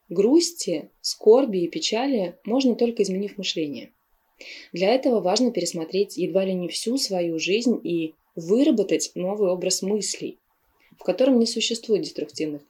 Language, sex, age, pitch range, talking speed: Russian, female, 20-39, 170-225 Hz, 130 wpm